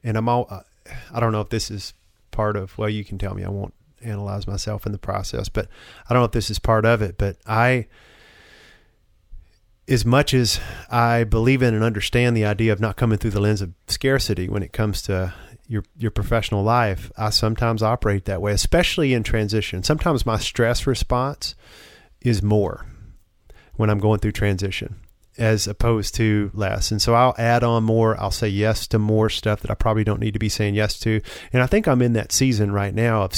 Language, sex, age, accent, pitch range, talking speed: English, male, 30-49, American, 100-115 Hz, 210 wpm